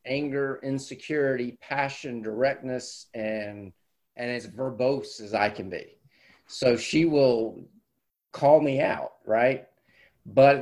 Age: 30-49